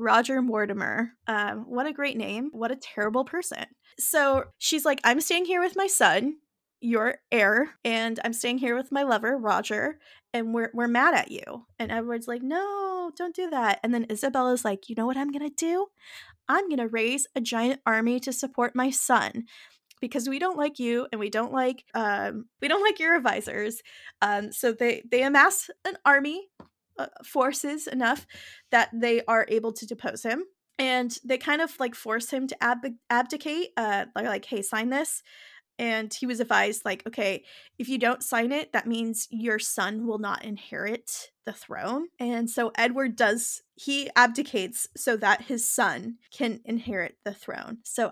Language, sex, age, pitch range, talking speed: English, female, 20-39, 230-280 Hz, 180 wpm